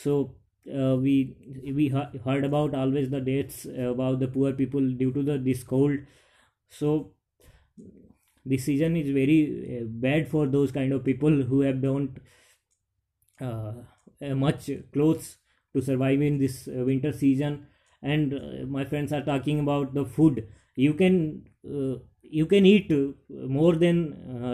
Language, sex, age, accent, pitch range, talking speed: English, male, 20-39, Indian, 130-155 Hz, 145 wpm